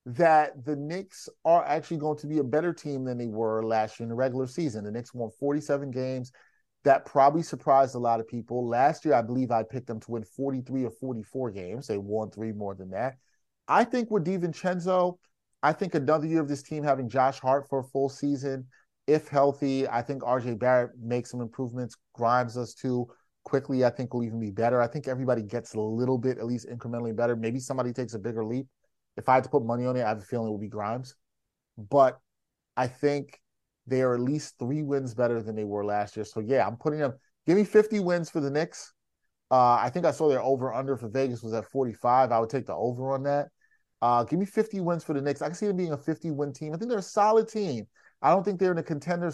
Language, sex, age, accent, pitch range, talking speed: English, male, 30-49, American, 120-150 Hz, 240 wpm